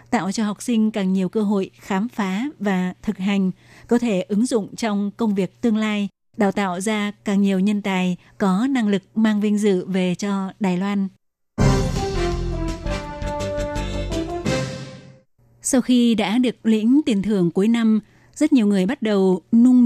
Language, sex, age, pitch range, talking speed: Vietnamese, female, 20-39, 185-220 Hz, 165 wpm